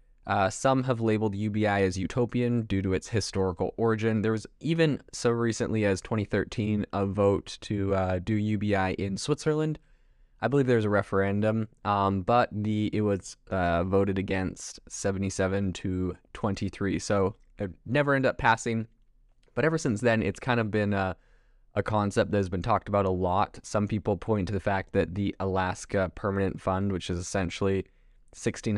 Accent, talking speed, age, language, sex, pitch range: American, 170 wpm, 20-39, English, male, 95-110 Hz